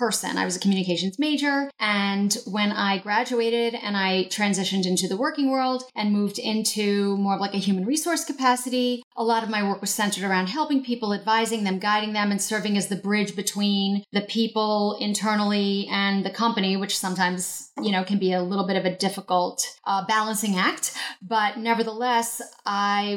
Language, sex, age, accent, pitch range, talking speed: English, female, 30-49, American, 195-235 Hz, 185 wpm